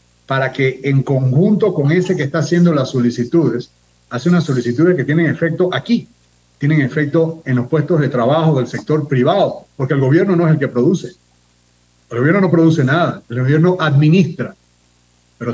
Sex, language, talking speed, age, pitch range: male, Spanish, 175 wpm, 40-59, 110-150 Hz